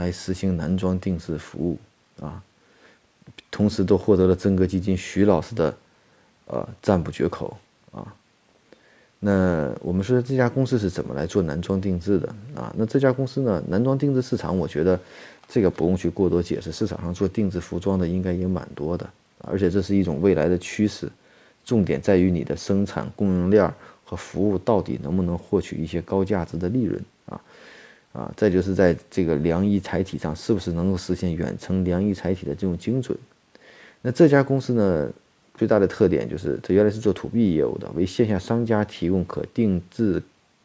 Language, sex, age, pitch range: Chinese, male, 30-49, 90-105 Hz